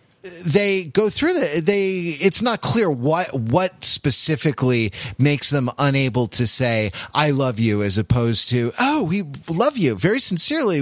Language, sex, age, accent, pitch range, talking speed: English, male, 30-49, American, 120-165 Hz, 155 wpm